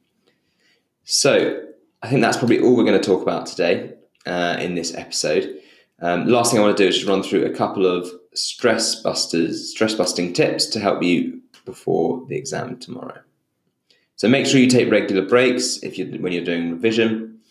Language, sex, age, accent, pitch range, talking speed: English, male, 20-39, British, 90-140 Hz, 190 wpm